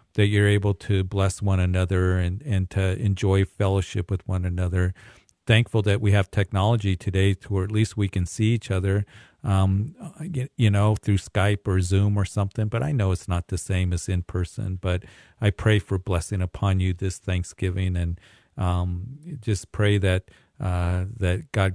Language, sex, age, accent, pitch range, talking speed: English, male, 50-69, American, 90-105 Hz, 180 wpm